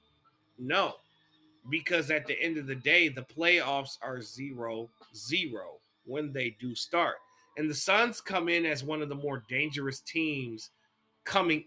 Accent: American